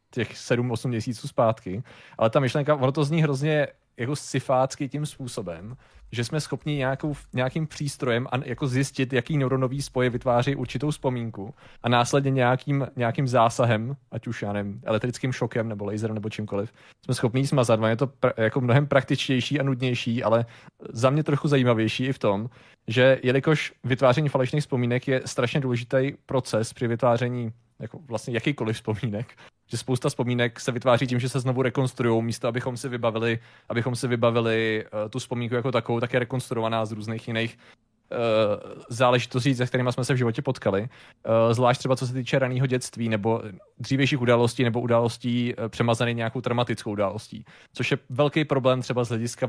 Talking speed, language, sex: 165 wpm, Czech, male